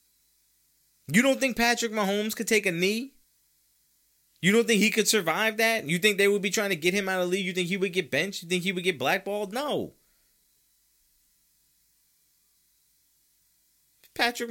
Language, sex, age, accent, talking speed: English, male, 30-49, American, 180 wpm